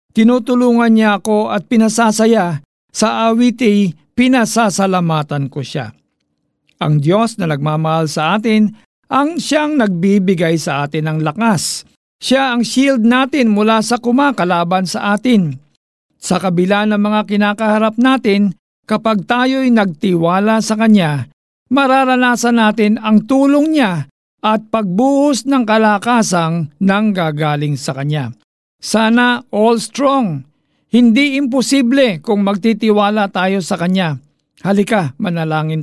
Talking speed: 115 wpm